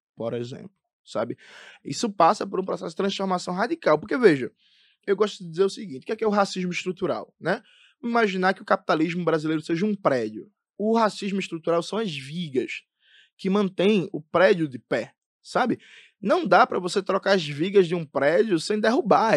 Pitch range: 145-195 Hz